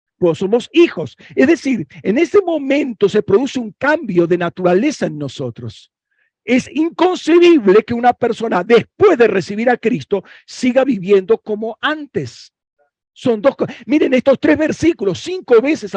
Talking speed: 140 wpm